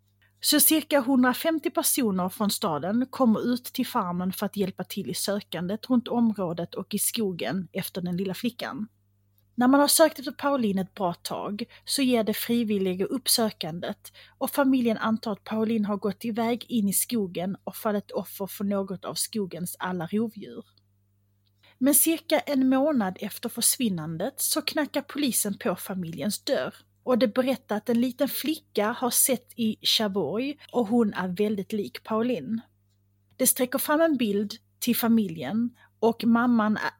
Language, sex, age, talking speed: Swedish, female, 30-49, 160 wpm